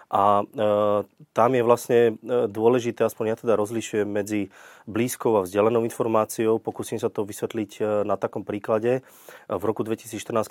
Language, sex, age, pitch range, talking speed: Slovak, male, 30-49, 105-125 Hz, 150 wpm